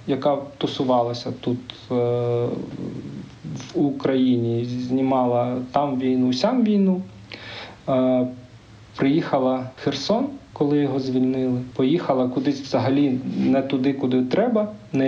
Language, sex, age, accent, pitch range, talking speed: Ukrainian, male, 40-59, native, 120-140 Hz, 100 wpm